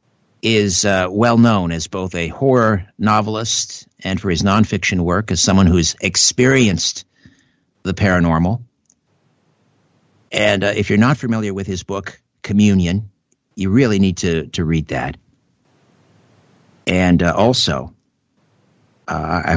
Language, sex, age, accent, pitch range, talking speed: English, male, 50-69, American, 80-95 Hz, 125 wpm